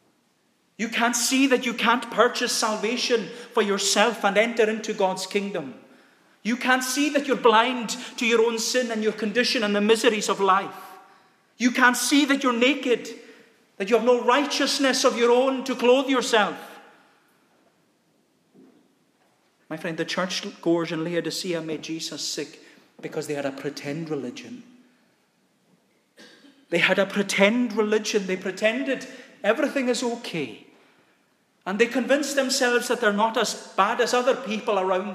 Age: 40-59